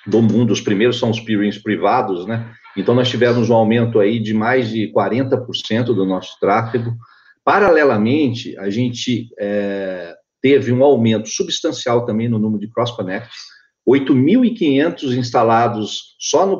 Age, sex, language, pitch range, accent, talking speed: 50-69, male, Portuguese, 105-140 Hz, Brazilian, 140 wpm